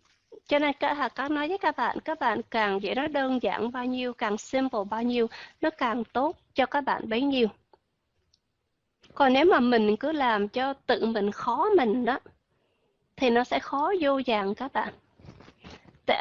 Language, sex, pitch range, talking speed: Vietnamese, female, 240-310 Hz, 190 wpm